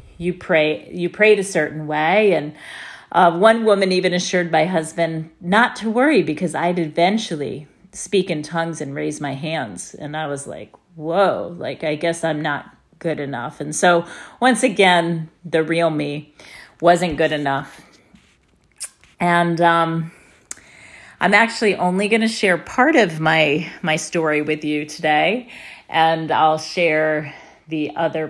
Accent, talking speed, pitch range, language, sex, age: American, 150 wpm, 155-185 Hz, English, female, 40-59